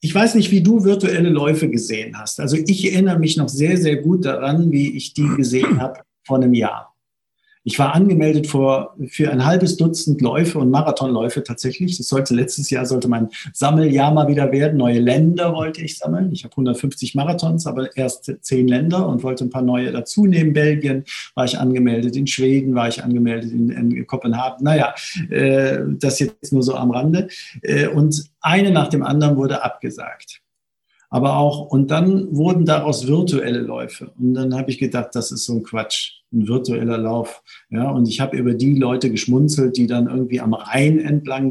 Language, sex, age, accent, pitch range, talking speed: German, male, 50-69, German, 125-150 Hz, 190 wpm